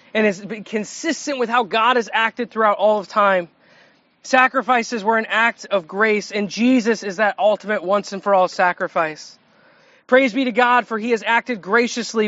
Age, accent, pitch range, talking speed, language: 30-49, American, 205-245 Hz, 180 wpm, English